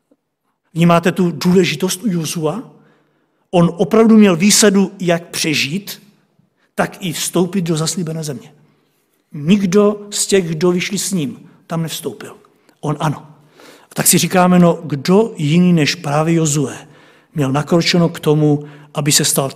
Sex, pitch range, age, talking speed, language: male, 150-180 Hz, 50-69, 140 wpm, Czech